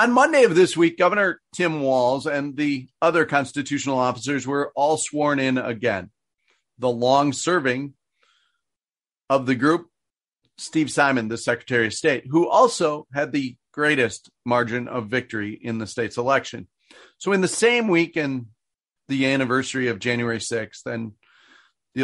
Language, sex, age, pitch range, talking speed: English, male, 40-59, 125-170 Hz, 145 wpm